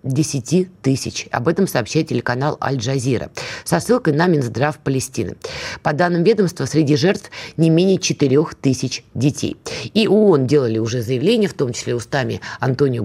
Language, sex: Russian, female